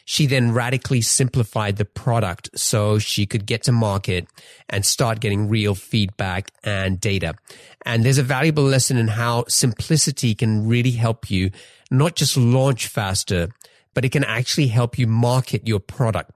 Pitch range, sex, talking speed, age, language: 105-135 Hz, male, 160 wpm, 30-49, English